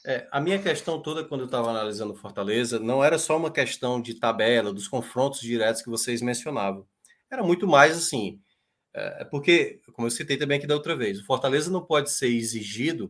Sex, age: male, 20-39